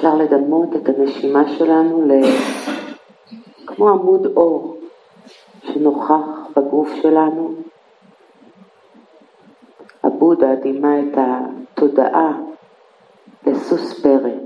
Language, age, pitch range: Hebrew, 50-69, 140-165 Hz